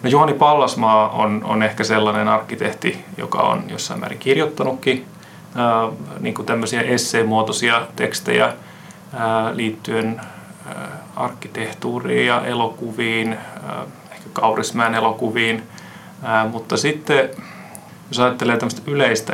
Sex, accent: male, native